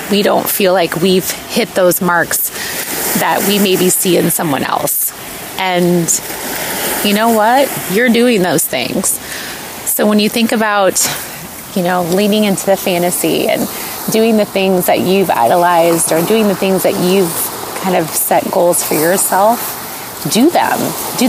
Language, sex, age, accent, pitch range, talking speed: English, female, 30-49, American, 180-220 Hz, 160 wpm